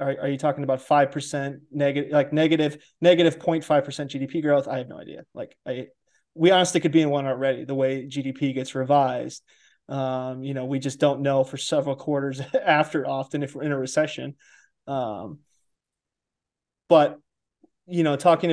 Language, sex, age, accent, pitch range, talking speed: English, male, 20-39, American, 135-155 Hz, 170 wpm